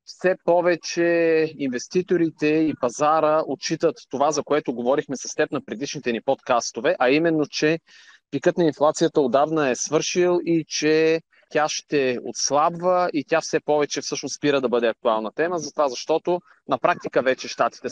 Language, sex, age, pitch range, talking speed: Bulgarian, male, 30-49, 135-170 Hz, 155 wpm